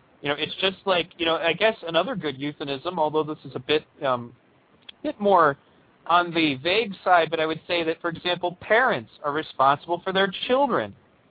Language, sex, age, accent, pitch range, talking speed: English, male, 40-59, American, 150-190 Hz, 200 wpm